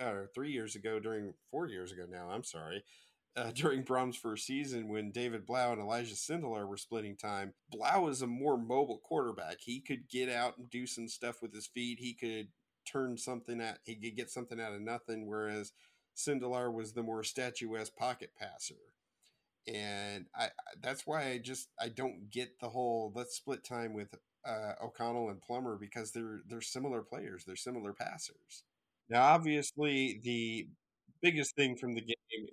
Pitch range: 105-125 Hz